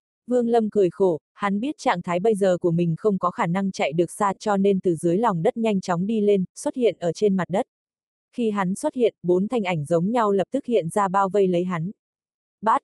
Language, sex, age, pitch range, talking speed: Vietnamese, female, 20-39, 180-225 Hz, 250 wpm